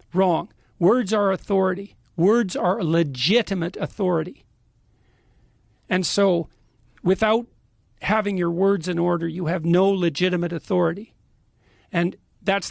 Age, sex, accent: 50-69, male, American